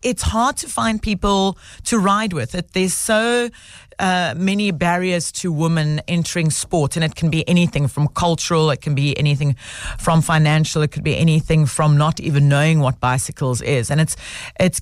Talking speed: 180 wpm